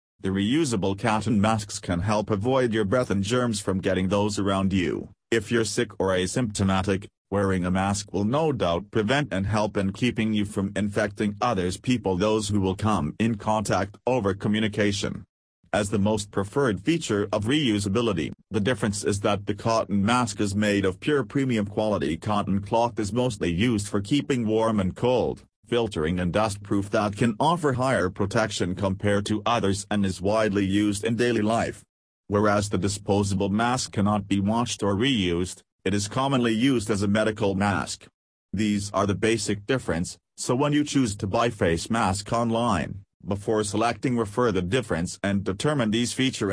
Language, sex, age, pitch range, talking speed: English, male, 40-59, 100-115 Hz, 175 wpm